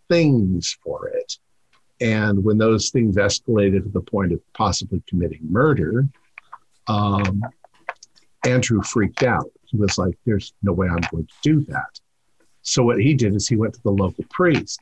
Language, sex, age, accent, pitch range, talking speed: English, male, 50-69, American, 100-125 Hz, 165 wpm